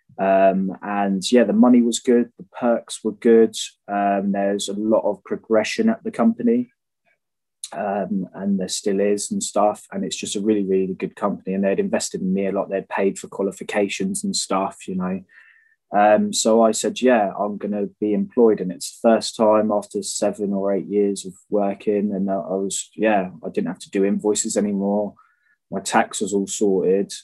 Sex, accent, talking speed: male, British, 195 wpm